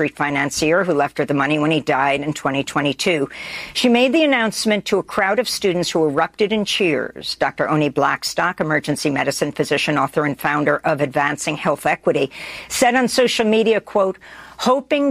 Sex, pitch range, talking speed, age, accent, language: female, 155-215 Hz, 170 wpm, 50-69, American, English